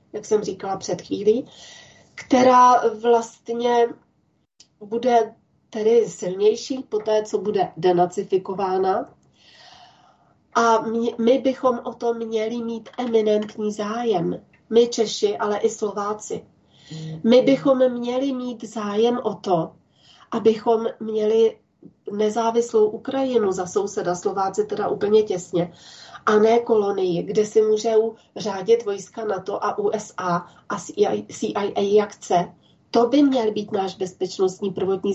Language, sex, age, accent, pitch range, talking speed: Czech, female, 40-59, native, 205-240 Hz, 120 wpm